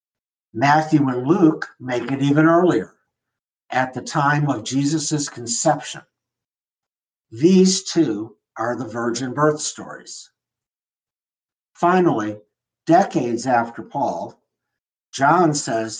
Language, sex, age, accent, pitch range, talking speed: English, male, 60-79, American, 120-155 Hz, 100 wpm